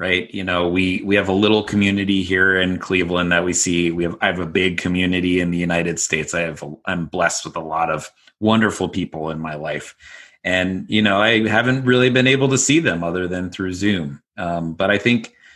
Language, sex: English, male